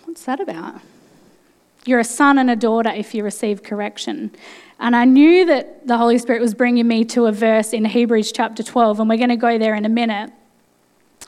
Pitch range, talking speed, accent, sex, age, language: 225-275 Hz, 205 wpm, Australian, female, 20-39, English